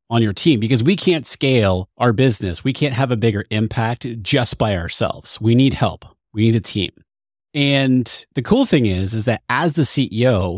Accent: American